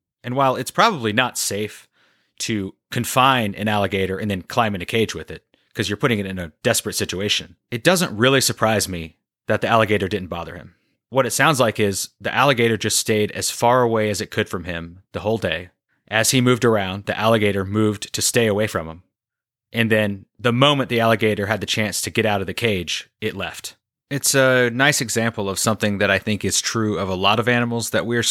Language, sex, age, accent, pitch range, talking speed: English, male, 30-49, American, 95-115 Hz, 220 wpm